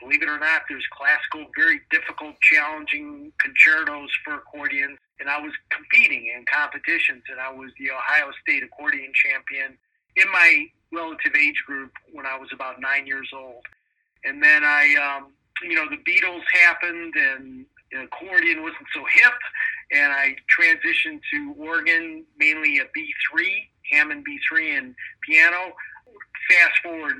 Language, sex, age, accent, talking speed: English, male, 40-59, American, 150 wpm